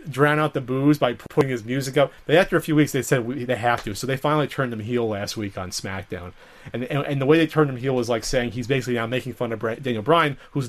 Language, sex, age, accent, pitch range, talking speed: English, male, 30-49, American, 120-155 Hz, 280 wpm